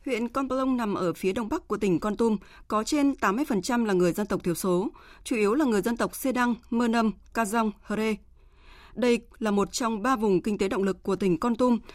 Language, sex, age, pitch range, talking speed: Vietnamese, female, 20-39, 195-255 Hz, 240 wpm